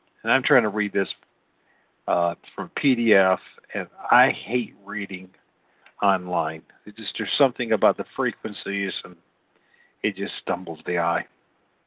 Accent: American